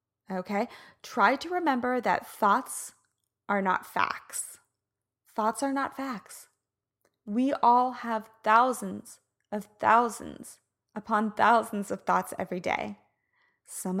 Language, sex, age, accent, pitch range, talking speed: English, female, 20-39, American, 205-260 Hz, 110 wpm